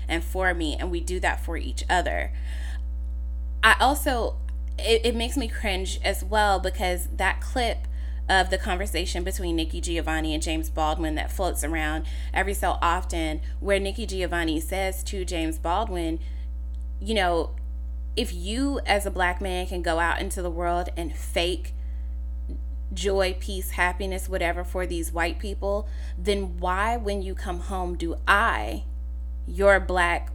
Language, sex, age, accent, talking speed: English, female, 20-39, American, 155 wpm